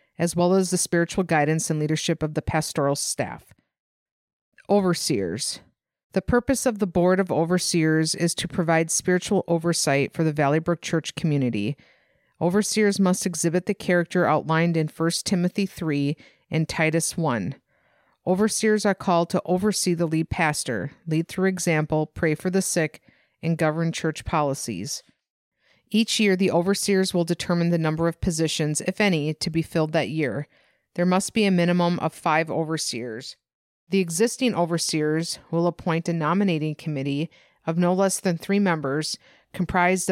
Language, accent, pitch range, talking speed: English, American, 155-185 Hz, 155 wpm